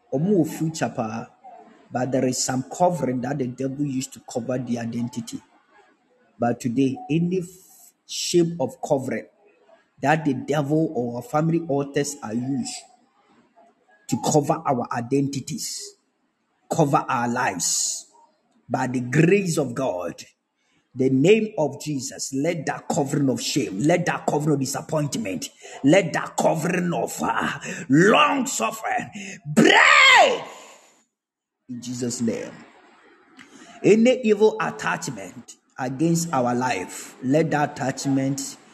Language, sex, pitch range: Japanese, male, 125-175 Hz